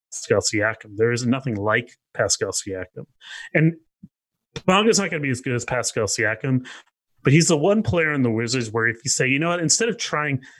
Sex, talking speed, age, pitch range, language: male, 215 wpm, 30-49, 115-150 Hz, English